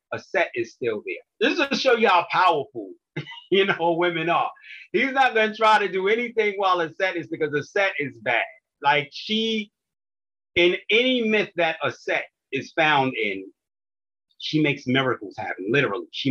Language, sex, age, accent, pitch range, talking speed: English, male, 30-49, American, 120-175 Hz, 180 wpm